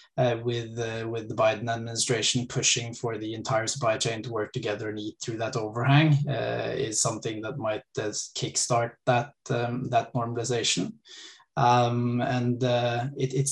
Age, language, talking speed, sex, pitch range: 20-39, English, 165 wpm, male, 115-130 Hz